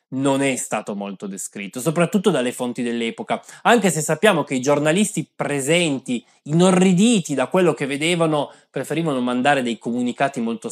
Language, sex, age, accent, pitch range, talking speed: Italian, male, 20-39, native, 120-165 Hz, 145 wpm